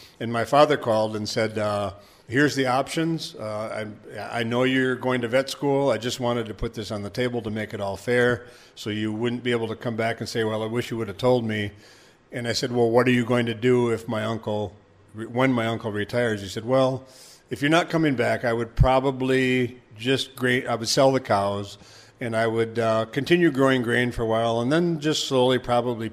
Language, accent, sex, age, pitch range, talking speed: English, American, male, 50-69, 110-130 Hz, 230 wpm